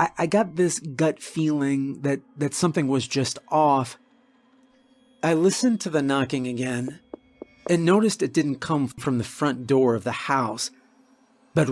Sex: male